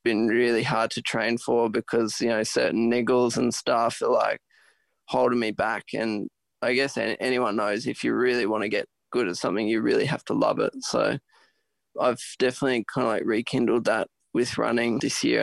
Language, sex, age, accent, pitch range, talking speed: English, male, 20-39, Australian, 115-135 Hz, 195 wpm